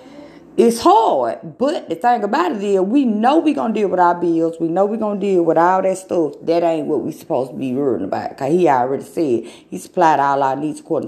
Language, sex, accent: English, female, American